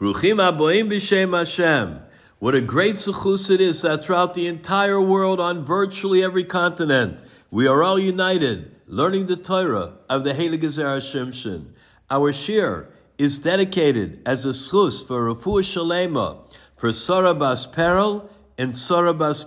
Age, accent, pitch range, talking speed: 60-79, American, 140-195 Hz, 130 wpm